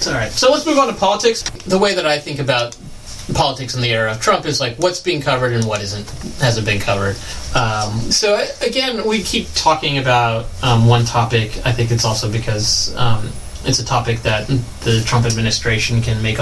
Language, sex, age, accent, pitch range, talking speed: English, male, 30-49, American, 115-130 Hz, 205 wpm